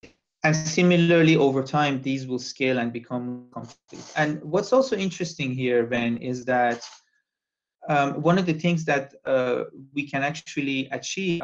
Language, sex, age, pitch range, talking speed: English, male, 30-49, 125-150 Hz, 150 wpm